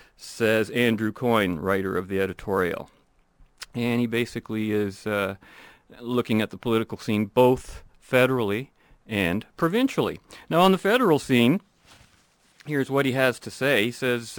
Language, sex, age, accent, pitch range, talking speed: English, male, 40-59, American, 105-135 Hz, 140 wpm